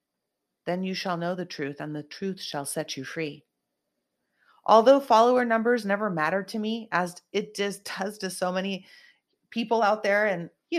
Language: English